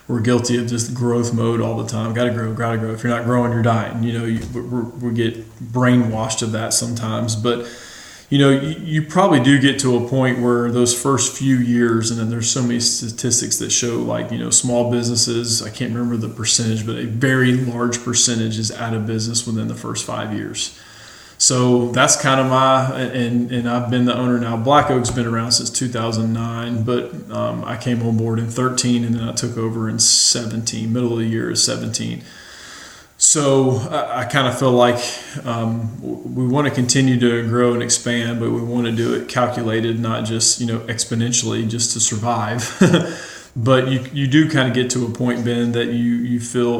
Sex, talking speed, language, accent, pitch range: male, 205 wpm, English, American, 115-125 Hz